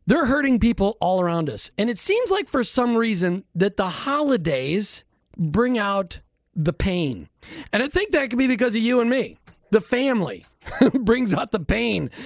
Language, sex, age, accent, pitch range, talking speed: English, male, 40-59, American, 175-245 Hz, 180 wpm